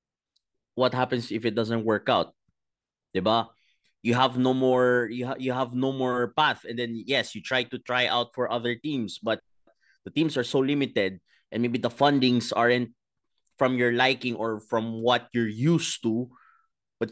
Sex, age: male, 20-39